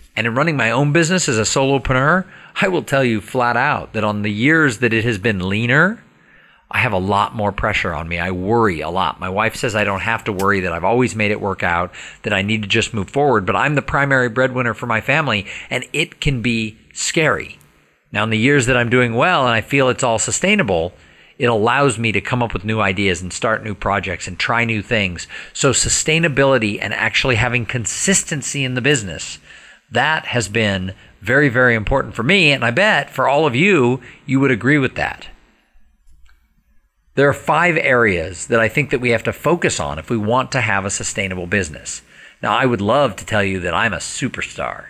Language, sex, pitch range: English, male, 100-135 Hz